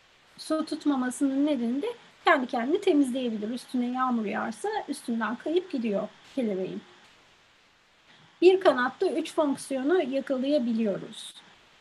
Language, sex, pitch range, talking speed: Turkish, female, 230-300 Hz, 95 wpm